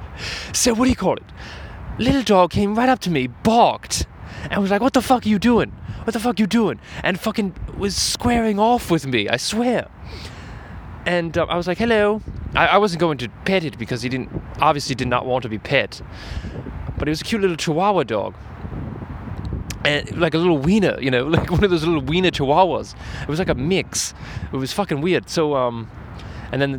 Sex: male